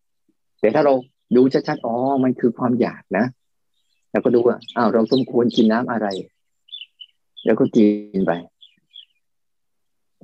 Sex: male